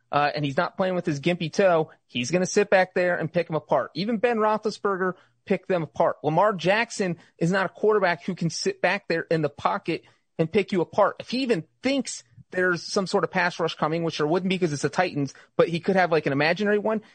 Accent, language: American, English